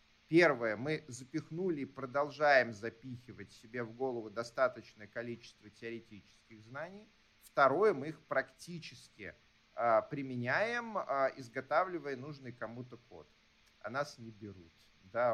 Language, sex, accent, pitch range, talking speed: Russian, male, native, 110-145 Hz, 115 wpm